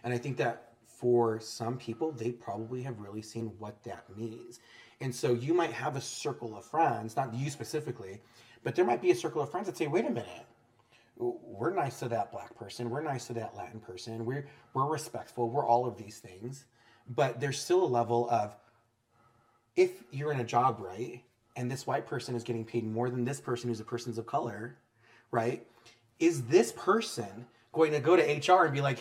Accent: American